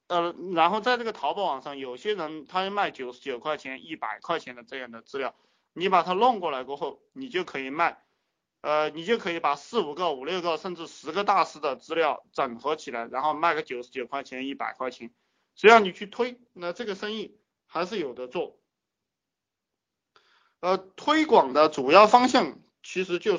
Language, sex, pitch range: Chinese, male, 150-225 Hz